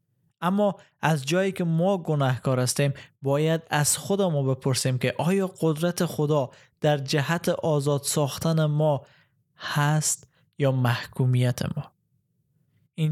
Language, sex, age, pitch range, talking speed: Persian, male, 20-39, 145-170 Hz, 120 wpm